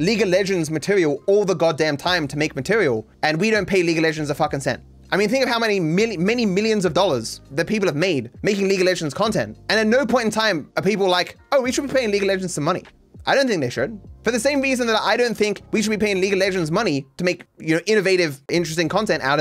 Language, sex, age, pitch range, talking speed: English, male, 20-39, 160-215 Hz, 275 wpm